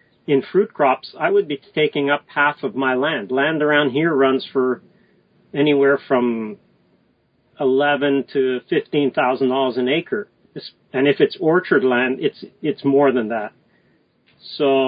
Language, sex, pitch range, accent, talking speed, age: English, male, 130-155 Hz, American, 140 wpm, 40-59